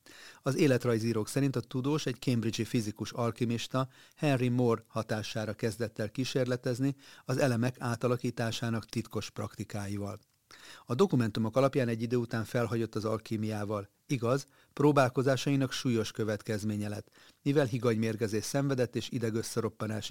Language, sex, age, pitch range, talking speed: Hungarian, male, 40-59, 110-130 Hz, 120 wpm